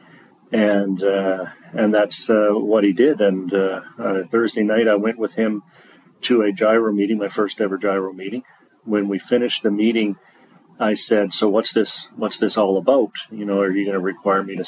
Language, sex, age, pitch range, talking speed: English, male, 40-59, 100-115 Hz, 195 wpm